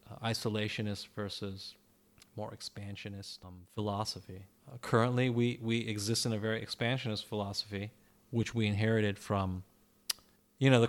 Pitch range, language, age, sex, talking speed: 105-130 Hz, English, 30-49, male, 125 wpm